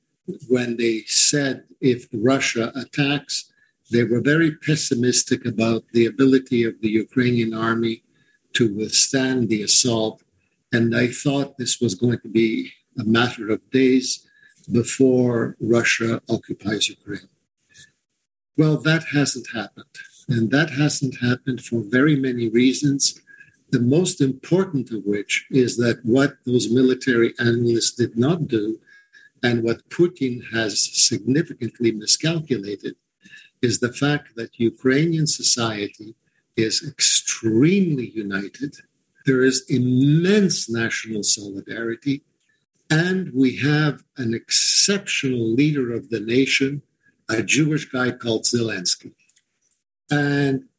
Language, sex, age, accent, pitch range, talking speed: English, male, 50-69, American, 115-145 Hz, 115 wpm